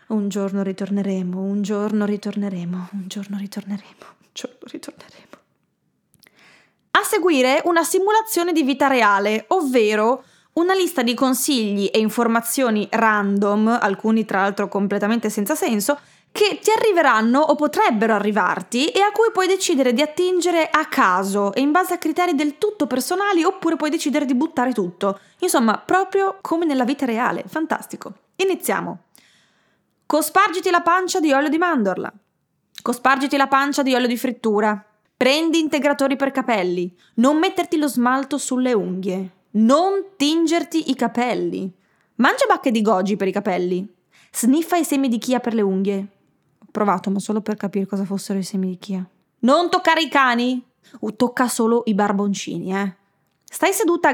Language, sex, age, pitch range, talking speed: Italian, female, 20-39, 200-305 Hz, 150 wpm